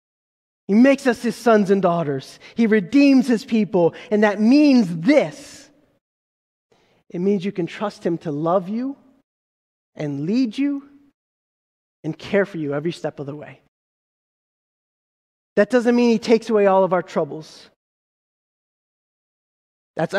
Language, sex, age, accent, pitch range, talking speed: English, male, 20-39, American, 185-240 Hz, 140 wpm